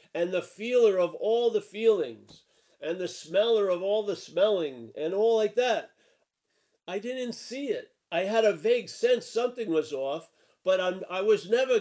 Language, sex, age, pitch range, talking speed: English, male, 50-69, 160-220 Hz, 180 wpm